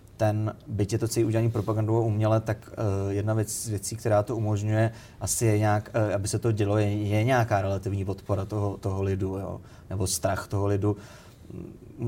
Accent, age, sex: native, 30-49, male